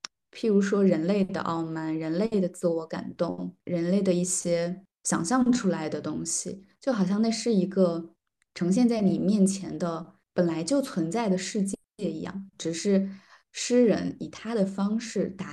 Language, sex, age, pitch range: Chinese, female, 20-39, 170-200 Hz